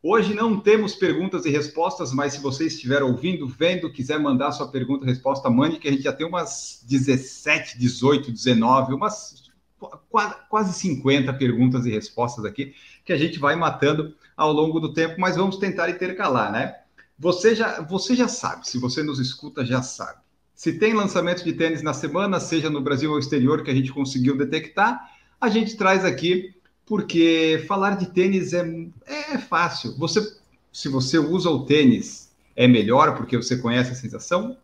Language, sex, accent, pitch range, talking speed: Portuguese, male, Brazilian, 135-190 Hz, 175 wpm